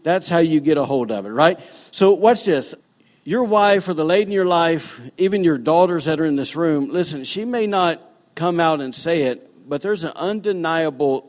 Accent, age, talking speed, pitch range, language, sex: American, 50-69, 220 wpm, 145-195 Hz, English, male